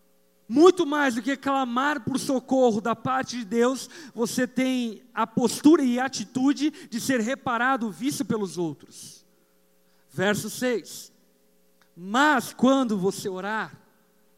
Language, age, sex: Portuguese, 50-69, male